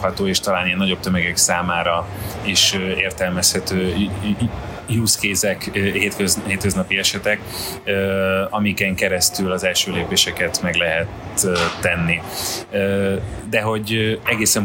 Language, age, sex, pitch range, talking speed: Hungarian, 30-49, male, 95-105 Hz, 95 wpm